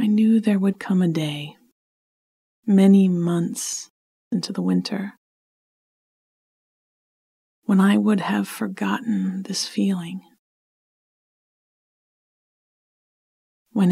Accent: American